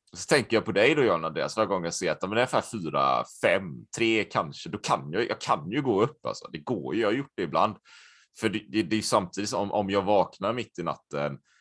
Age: 30-49